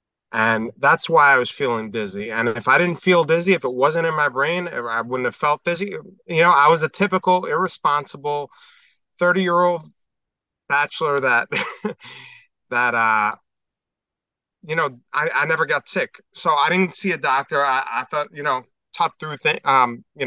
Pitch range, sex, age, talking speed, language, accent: 115-160 Hz, male, 30-49, 170 wpm, English, American